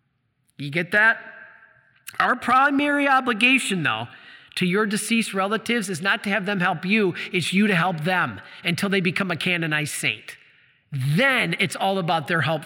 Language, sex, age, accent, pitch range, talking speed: English, male, 40-59, American, 175-240 Hz, 165 wpm